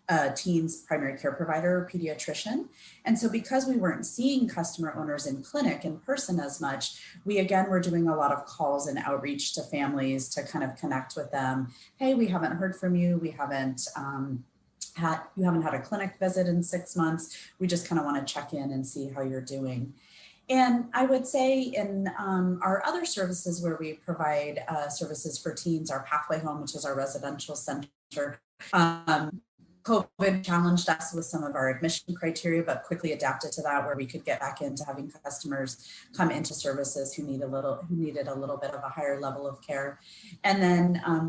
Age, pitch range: 30-49, 140-180 Hz